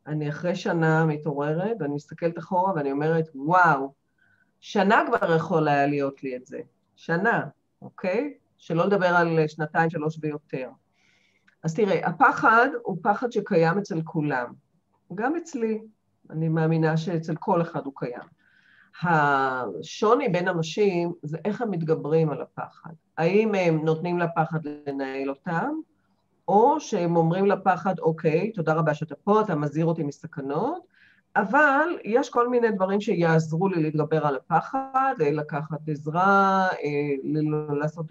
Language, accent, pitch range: Hebrew, native, 155-200 Hz